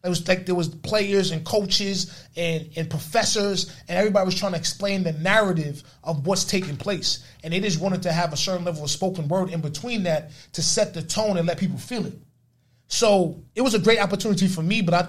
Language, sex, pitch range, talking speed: English, male, 150-180 Hz, 225 wpm